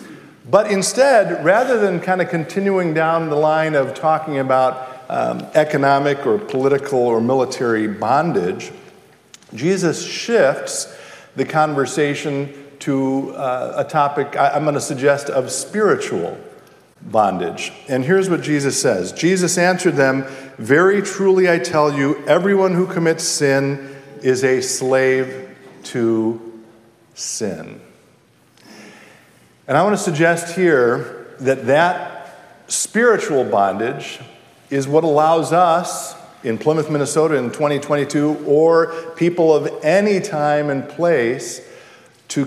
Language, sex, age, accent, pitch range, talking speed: English, male, 50-69, American, 130-165 Hz, 115 wpm